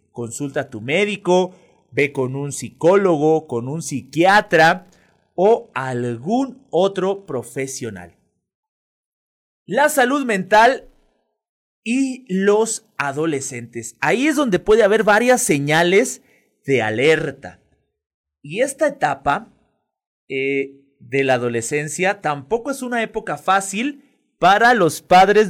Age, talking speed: 30-49, 105 wpm